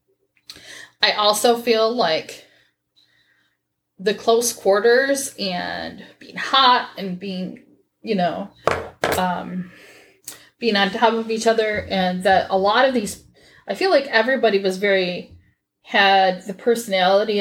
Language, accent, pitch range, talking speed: English, American, 185-235 Hz, 125 wpm